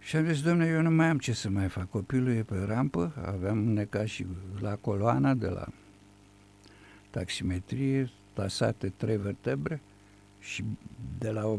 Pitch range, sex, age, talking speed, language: 95-115 Hz, male, 60-79, 155 wpm, Romanian